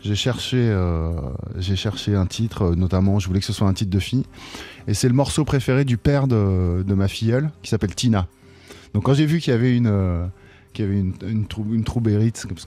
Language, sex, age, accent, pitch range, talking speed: French, male, 20-39, French, 95-115 Hz, 235 wpm